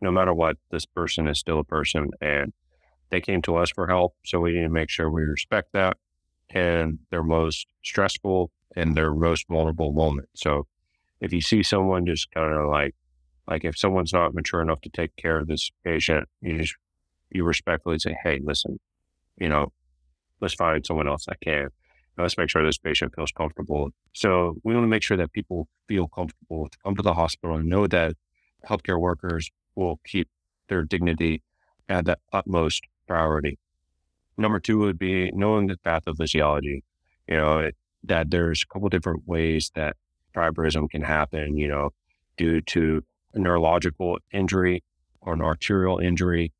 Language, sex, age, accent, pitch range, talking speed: English, male, 30-49, American, 75-90 Hz, 175 wpm